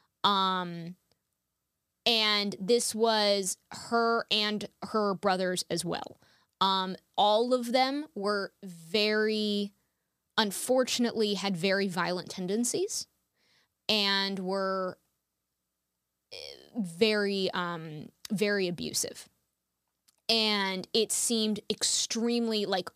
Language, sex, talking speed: English, female, 85 wpm